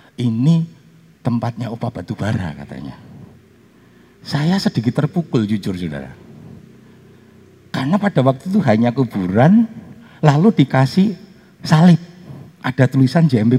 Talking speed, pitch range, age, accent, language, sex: 100 wpm, 100-160 Hz, 50-69, native, Indonesian, male